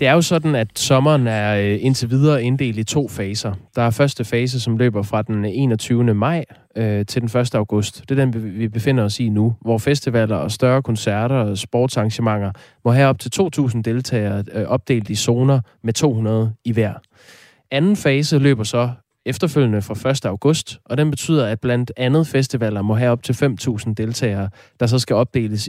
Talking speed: 185 wpm